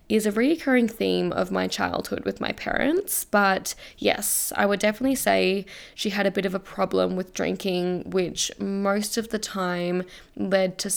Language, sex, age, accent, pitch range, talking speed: English, female, 10-29, Australian, 175-205 Hz, 175 wpm